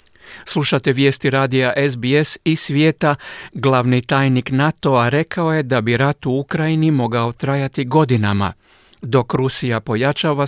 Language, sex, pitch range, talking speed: Croatian, male, 130-155 Hz, 125 wpm